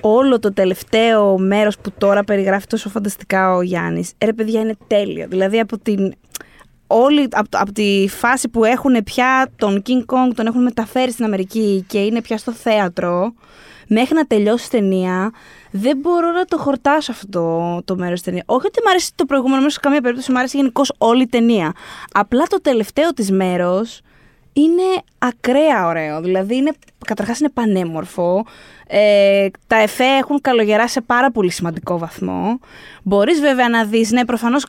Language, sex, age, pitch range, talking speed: Greek, female, 20-39, 200-270 Hz, 165 wpm